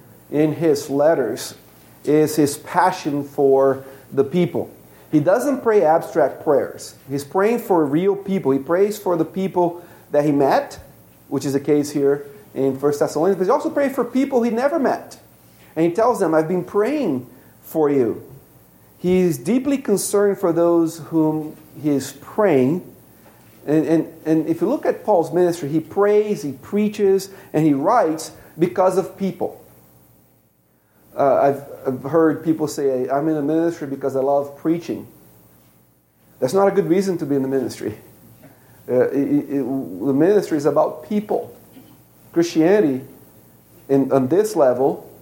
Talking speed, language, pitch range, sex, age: 155 wpm, English, 135-180 Hz, male, 40-59